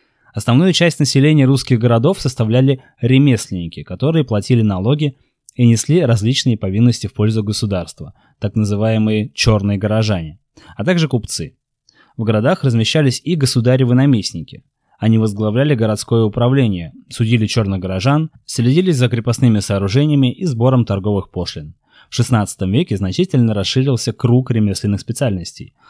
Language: Russian